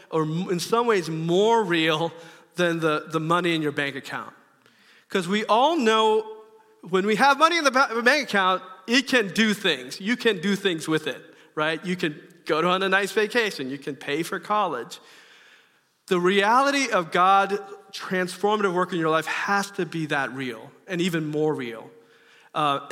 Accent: American